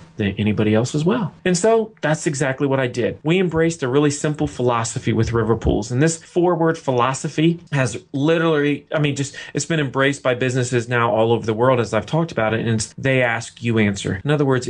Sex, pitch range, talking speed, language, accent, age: male, 125-165 Hz, 220 wpm, English, American, 30-49